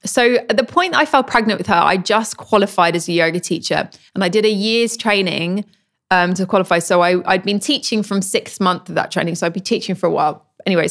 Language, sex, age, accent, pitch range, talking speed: English, female, 20-39, British, 165-195 Hz, 240 wpm